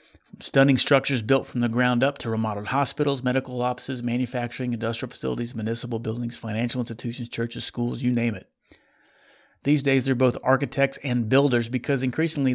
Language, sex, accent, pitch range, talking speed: English, male, American, 115-140 Hz, 160 wpm